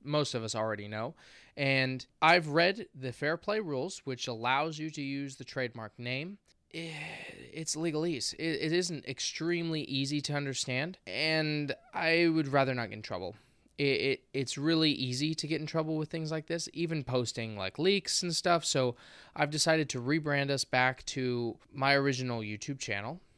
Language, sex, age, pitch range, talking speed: English, male, 20-39, 125-160 Hz, 175 wpm